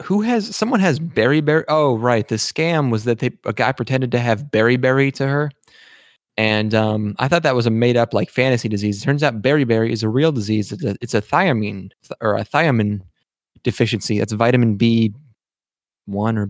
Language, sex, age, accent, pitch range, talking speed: English, male, 20-39, American, 105-130 Hz, 205 wpm